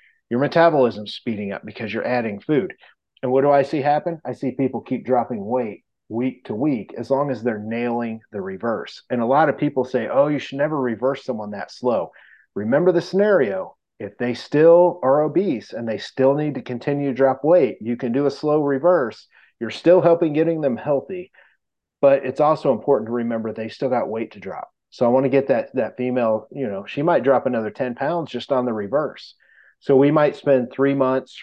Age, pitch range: 30-49, 115-140 Hz